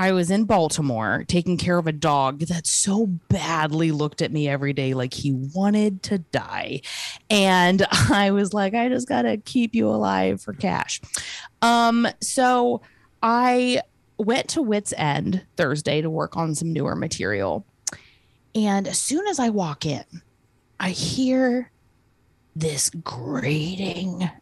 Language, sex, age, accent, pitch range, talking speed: English, female, 20-39, American, 145-210 Hz, 145 wpm